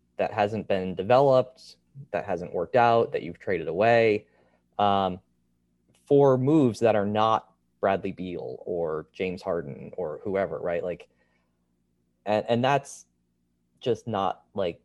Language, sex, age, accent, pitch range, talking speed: English, male, 20-39, American, 85-115 Hz, 135 wpm